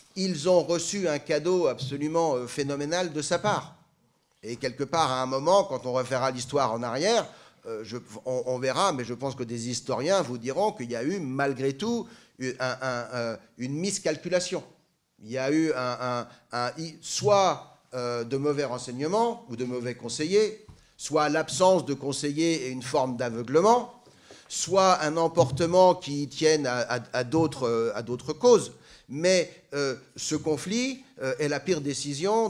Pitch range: 135-185 Hz